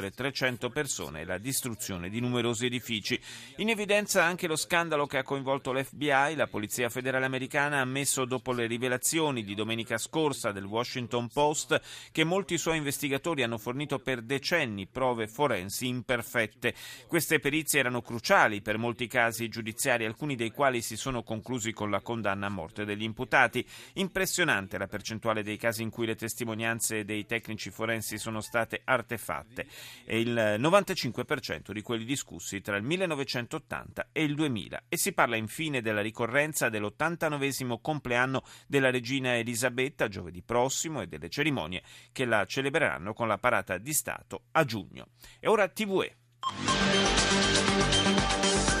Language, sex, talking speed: Italian, male, 150 wpm